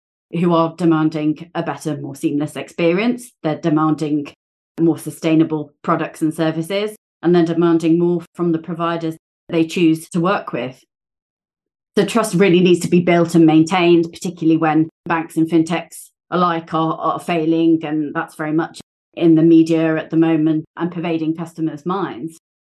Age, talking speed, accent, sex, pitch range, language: 30-49, 155 wpm, British, female, 160-175 Hz, English